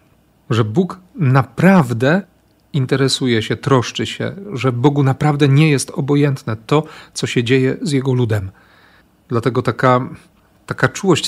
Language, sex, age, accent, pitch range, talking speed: Polish, male, 40-59, native, 115-140 Hz, 130 wpm